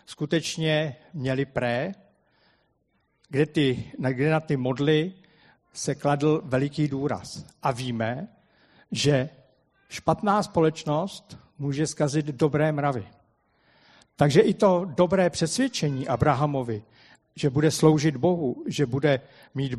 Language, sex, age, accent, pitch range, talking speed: Czech, male, 50-69, native, 140-180 Hz, 105 wpm